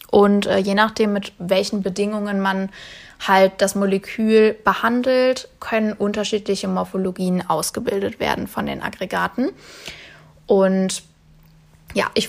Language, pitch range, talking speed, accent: German, 190-220 Hz, 105 wpm, German